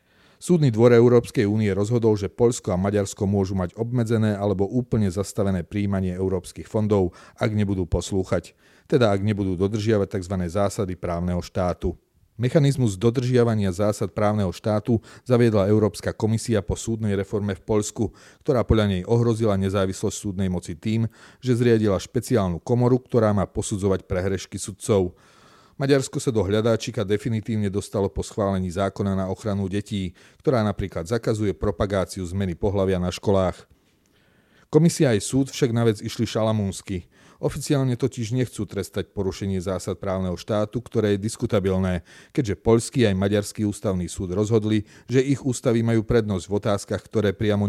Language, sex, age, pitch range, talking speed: Slovak, male, 40-59, 95-115 Hz, 145 wpm